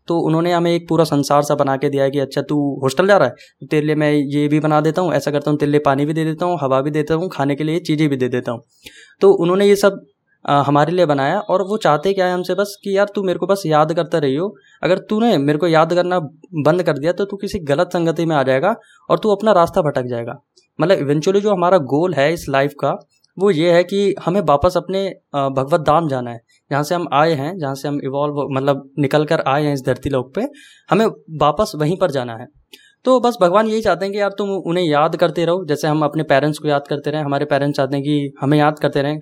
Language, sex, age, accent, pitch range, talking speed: Hindi, male, 20-39, native, 140-180 Hz, 255 wpm